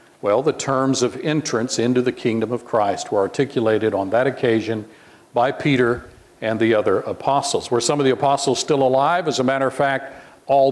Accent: American